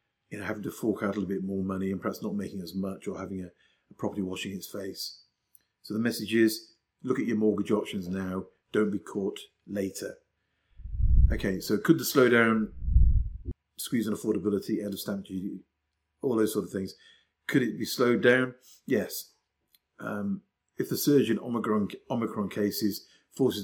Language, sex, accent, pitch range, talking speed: English, male, British, 100-115 Hz, 175 wpm